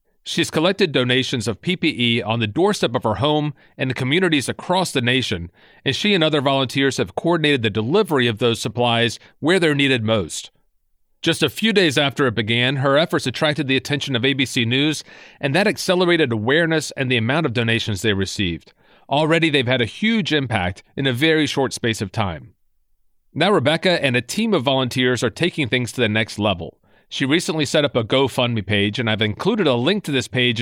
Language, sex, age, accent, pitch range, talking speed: English, male, 40-59, American, 115-155 Hz, 200 wpm